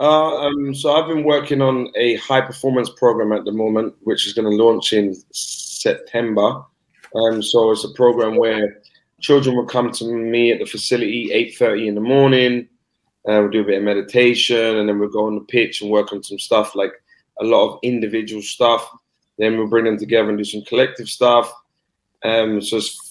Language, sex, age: English, male, 20-39